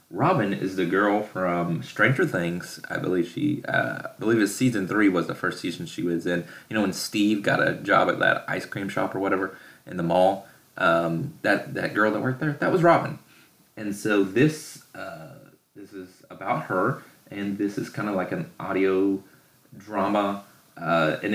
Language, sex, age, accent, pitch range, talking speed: English, male, 30-49, American, 90-110 Hz, 195 wpm